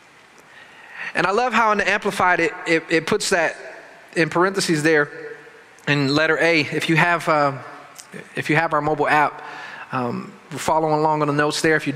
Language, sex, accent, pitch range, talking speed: English, male, American, 160-215 Hz, 190 wpm